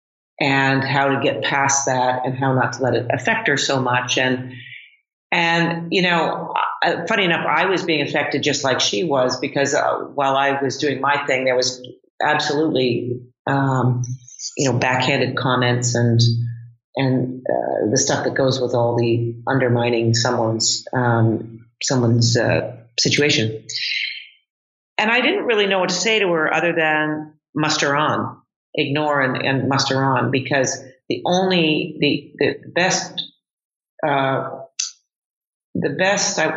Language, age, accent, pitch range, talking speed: English, 40-59, American, 125-155 Hz, 150 wpm